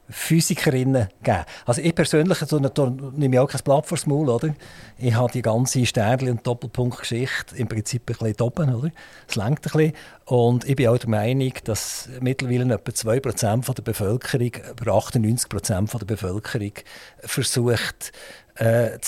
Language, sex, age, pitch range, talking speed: German, male, 50-69, 115-145 Hz, 150 wpm